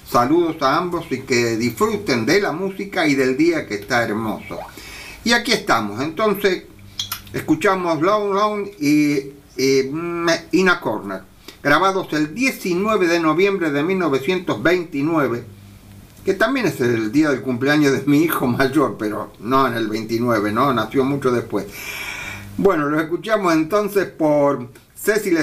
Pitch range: 125-205 Hz